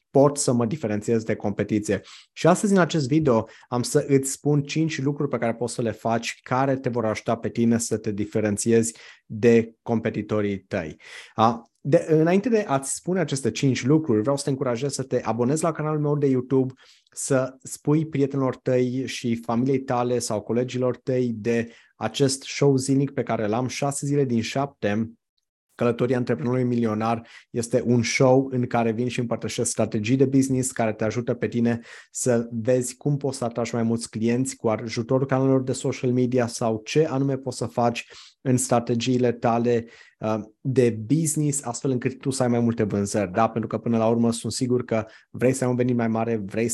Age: 20-39